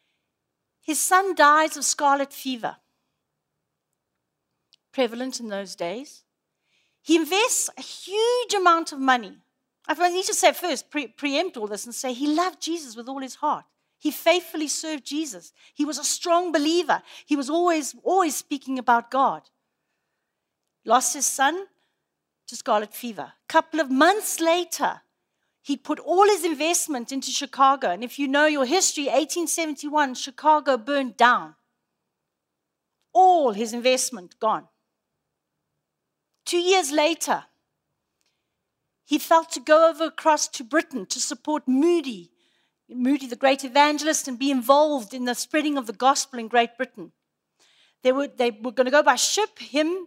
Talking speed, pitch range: 145 wpm, 255-325 Hz